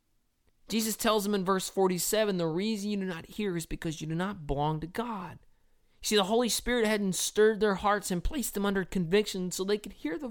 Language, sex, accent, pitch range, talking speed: English, male, American, 195-255 Hz, 220 wpm